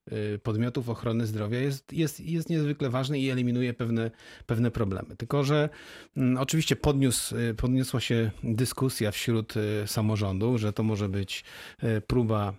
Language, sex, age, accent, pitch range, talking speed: Polish, male, 40-59, native, 115-135 Hz, 120 wpm